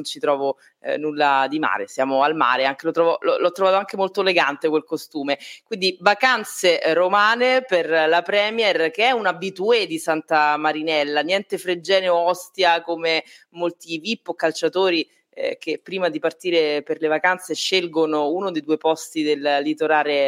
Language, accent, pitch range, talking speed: Italian, native, 155-185 Hz, 165 wpm